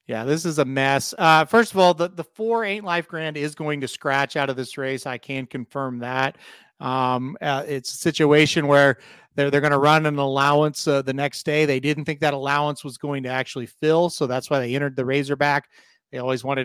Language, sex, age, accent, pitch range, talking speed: English, male, 30-49, American, 135-160 Hz, 230 wpm